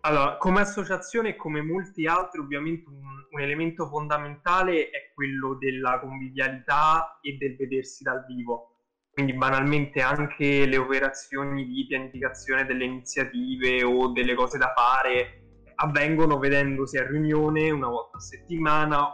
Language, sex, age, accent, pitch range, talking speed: Italian, male, 10-29, native, 130-160 Hz, 135 wpm